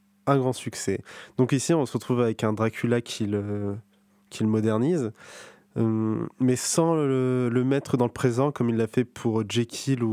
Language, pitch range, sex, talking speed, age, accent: French, 110-130 Hz, male, 190 wpm, 20-39, French